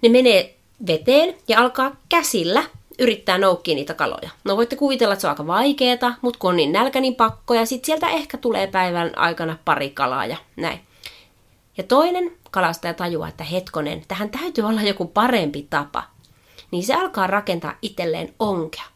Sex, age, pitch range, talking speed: female, 30-49, 175-245 Hz, 170 wpm